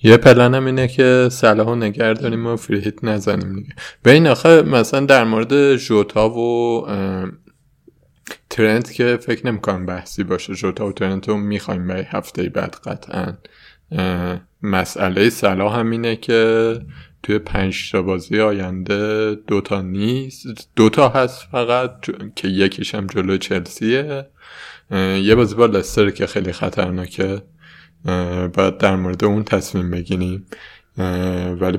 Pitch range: 95-115 Hz